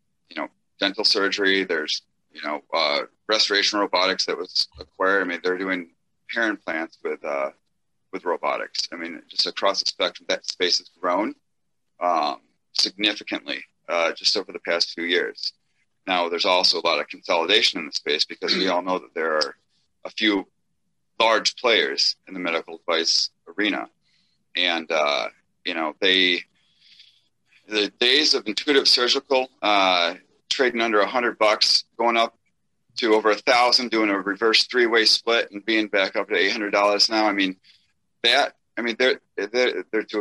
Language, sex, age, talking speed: English, male, 30-49, 165 wpm